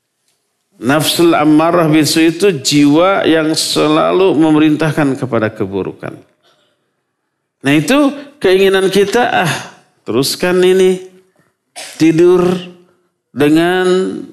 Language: Indonesian